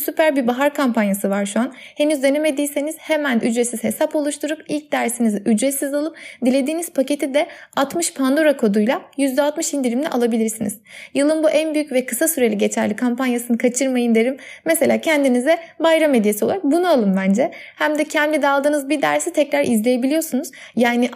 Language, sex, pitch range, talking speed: Turkish, female, 225-295 Hz, 155 wpm